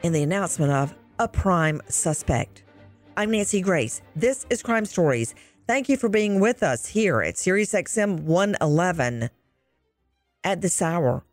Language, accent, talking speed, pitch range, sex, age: English, American, 150 wpm, 150-210 Hz, female, 50-69